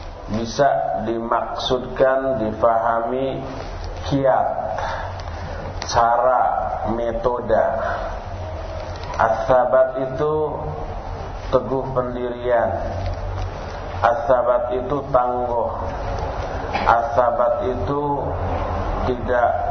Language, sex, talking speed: Malay, male, 50 wpm